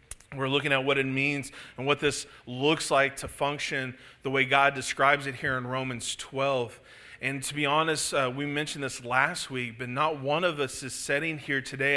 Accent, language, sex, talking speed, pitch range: American, English, male, 205 wpm, 130-150 Hz